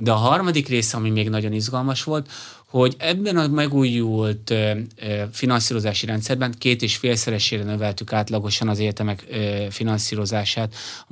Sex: male